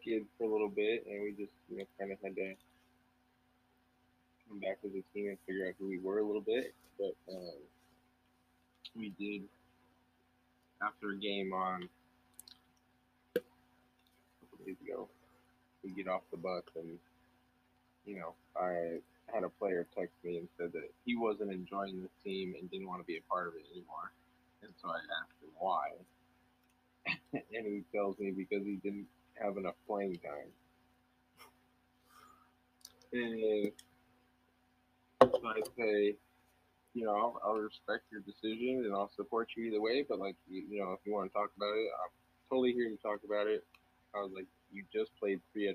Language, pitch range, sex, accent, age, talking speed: English, 85-105 Hz, male, American, 20-39, 170 wpm